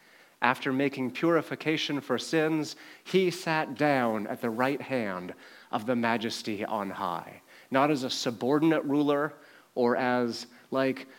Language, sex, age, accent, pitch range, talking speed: English, male, 30-49, American, 115-145 Hz, 135 wpm